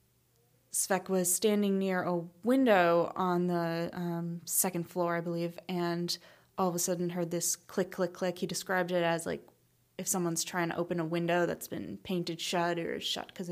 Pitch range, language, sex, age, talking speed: 170-185 Hz, English, female, 20-39, 185 wpm